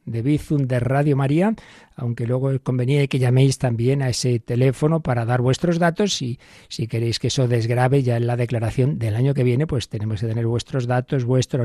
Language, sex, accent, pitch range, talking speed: Spanish, male, Spanish, 140-190 Hz, 200 wpm